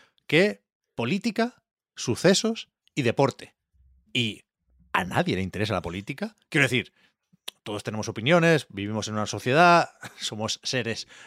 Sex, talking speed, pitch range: male, 120 wpm, 105-160 Hz